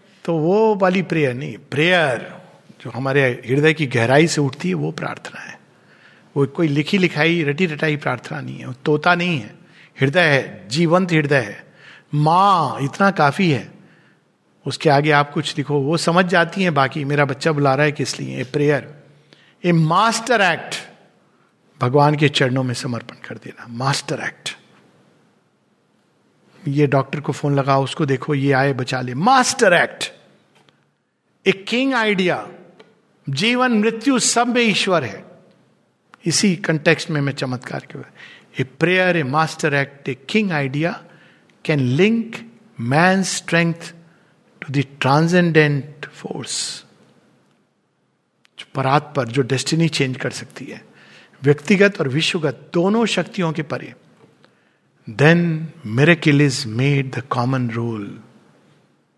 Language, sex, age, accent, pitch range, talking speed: Hindi, male, 50-69, native, 140-180 Hz, 135 wpm